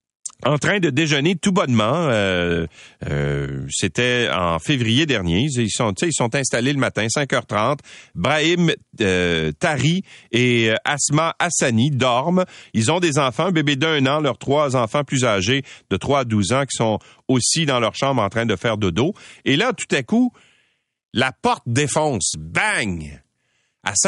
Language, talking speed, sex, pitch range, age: French, 165 wpm, male, 105-150 Hz, 40-59